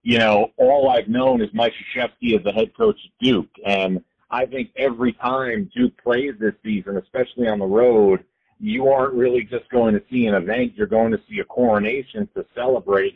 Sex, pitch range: male, 110-185 Hz